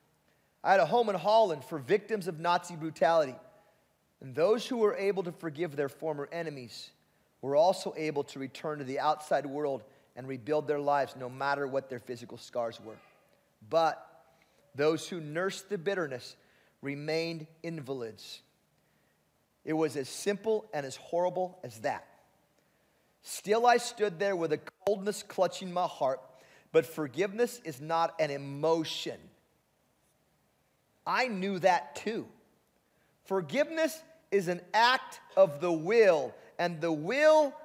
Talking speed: 140 wpm